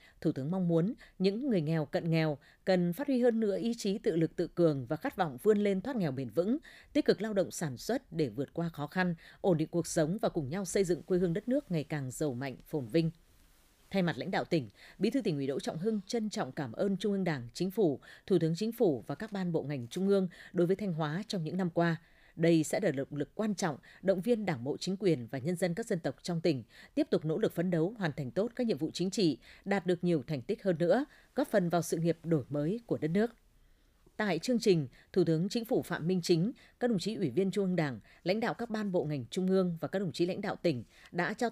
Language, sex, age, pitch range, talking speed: Vietnamese, female, 20-39, 155-200 Hz, 270 wpm